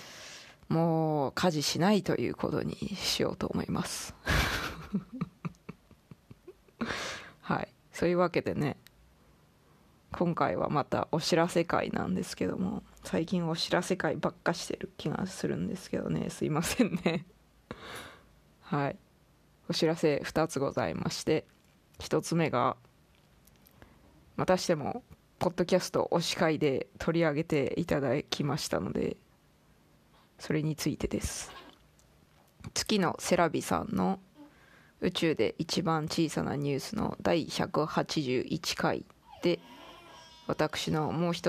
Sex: female